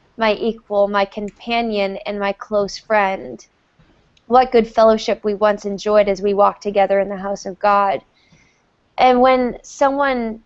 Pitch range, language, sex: 205-230 Hz, English, female